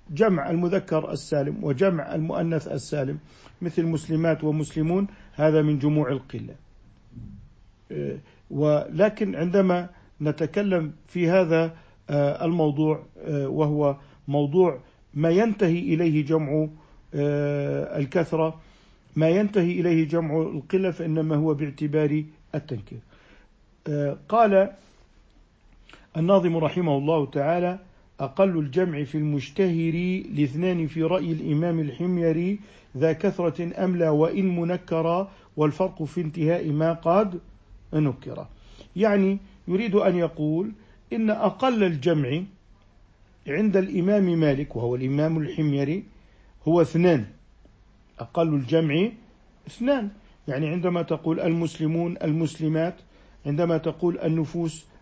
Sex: male